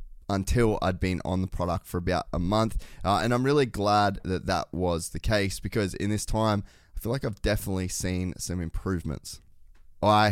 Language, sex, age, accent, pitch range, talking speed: English, male, 20-39, Australian, 90-105 Hz, 190 wpm